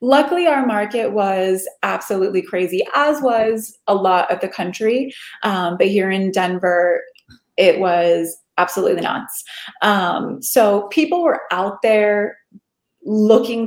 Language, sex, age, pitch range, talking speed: English, female, 30-49, 180-225 Hz, 125 wpm